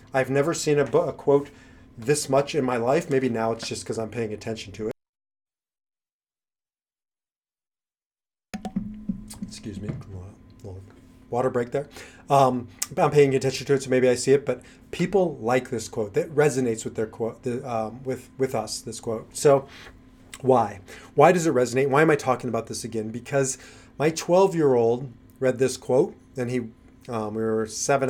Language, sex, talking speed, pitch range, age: English, male, 180 wpm, 110-135 Hz, 30-49